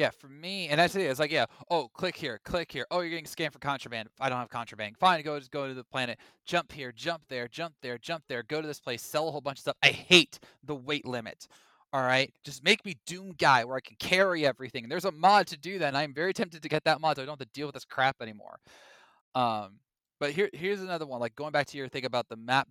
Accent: American